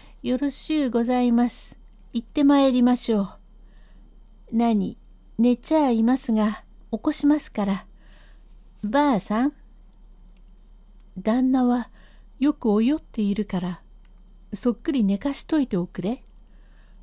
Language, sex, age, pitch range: Japanese, female, 60-79, 190-245 Hz